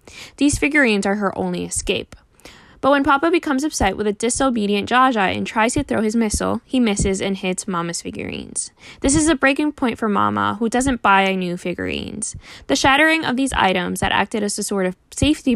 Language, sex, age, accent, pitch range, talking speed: English, female, 10-29, American, 190-260 Hz, 195 wpm